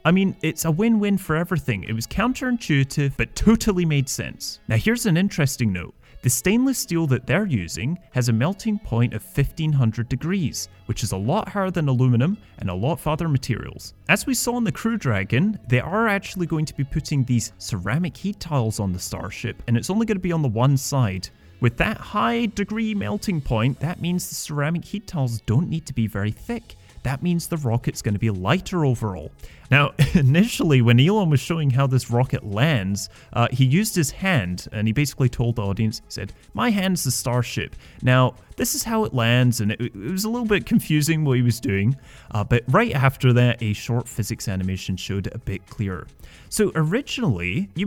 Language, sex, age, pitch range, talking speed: English, male, 30-49, 115-175 Hz, 205 wpm